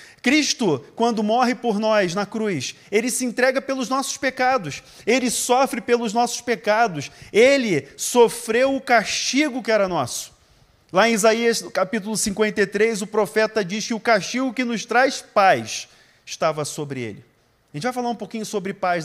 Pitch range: 150-220 Hz